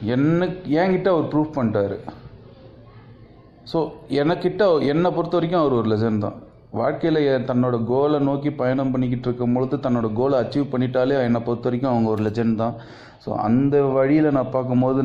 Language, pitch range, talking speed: Tamil, 115-135 Hz, 150 wpm